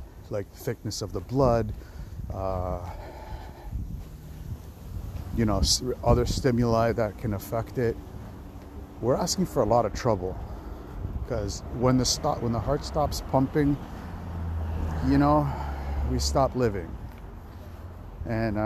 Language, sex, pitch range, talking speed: English, male, 90-120 Hz, 115 wpm